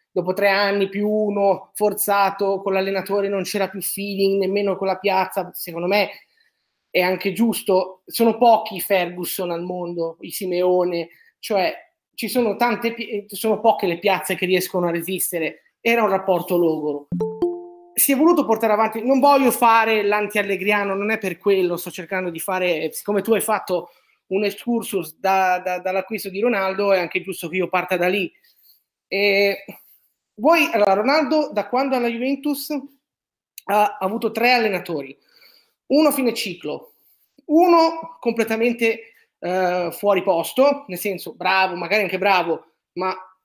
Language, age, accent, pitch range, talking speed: Italian, 20-39, native, 185-235 Hz, 150 wpm